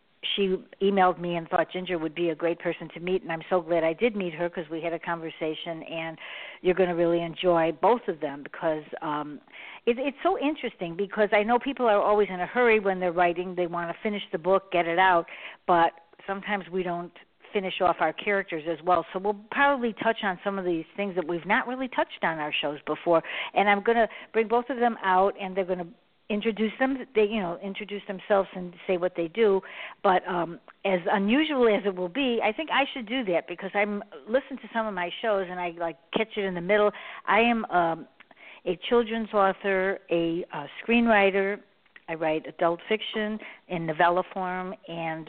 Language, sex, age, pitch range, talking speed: English, female, 60-79, 170-210 Hz, 215 wpm